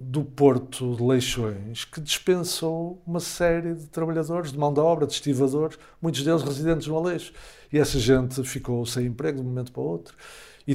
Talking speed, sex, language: 185 wpm, male, Portuguese